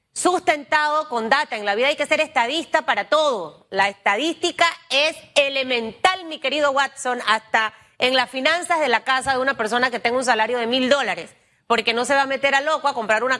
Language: Spanish